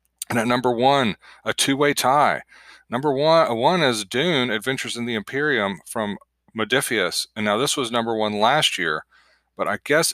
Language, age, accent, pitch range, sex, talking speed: English, 30-49, American, 105-130 Hz, male, 170 wpm